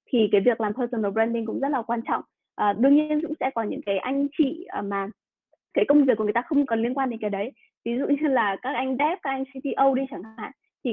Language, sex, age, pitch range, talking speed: Vietnamese, female, 20-39, 210-270 Hz, 270 wpm